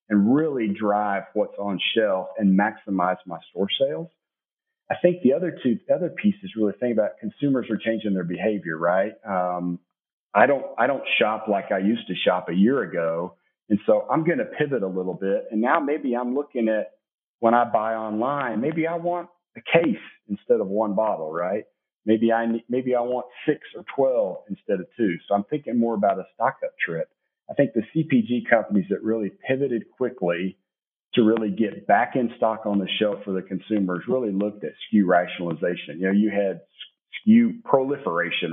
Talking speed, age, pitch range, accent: 190 wpm, 40-59, 95-135 Hz, American